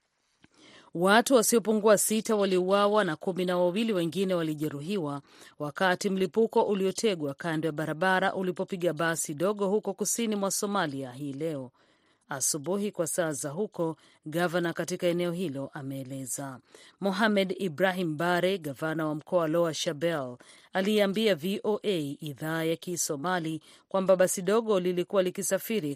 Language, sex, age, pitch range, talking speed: Swahili, female, 40-59, 155-195 Hz, 120 wpm